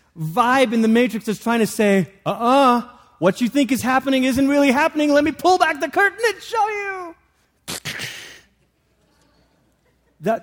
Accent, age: American, 30-49